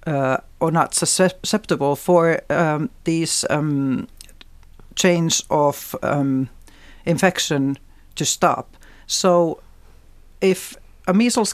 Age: 60-79